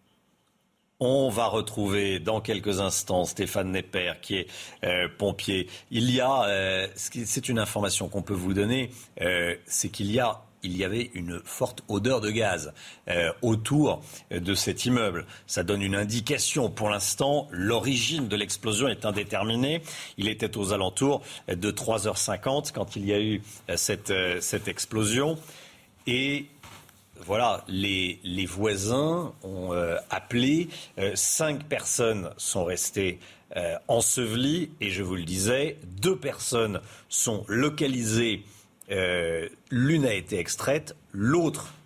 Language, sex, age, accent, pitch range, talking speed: French, male, 40-59, French, 100-125 Hz, 130 wpm